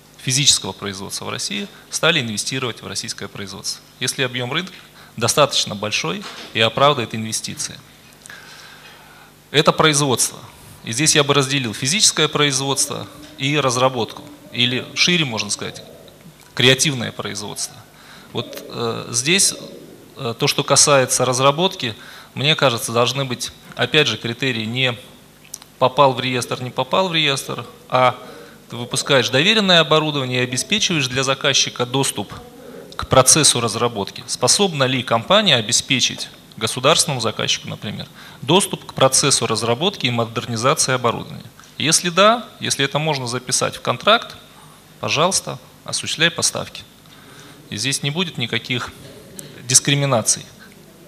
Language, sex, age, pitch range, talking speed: Russian, male, 20-39, 120-150 Hz, 120 wpm